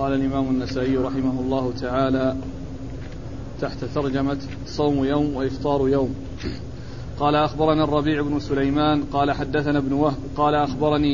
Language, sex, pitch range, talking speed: Arabic, male, 140-160 Hz, 125 wpm